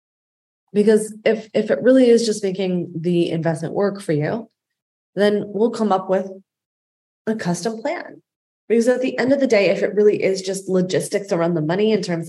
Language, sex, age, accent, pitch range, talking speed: English, female, 20-39, American, 175-230 Hz, 190 wpm